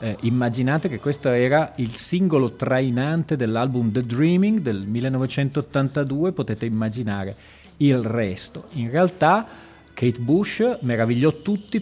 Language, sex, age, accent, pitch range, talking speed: Italian, male, 40-59, native, 110-140 Hz, 115 wpm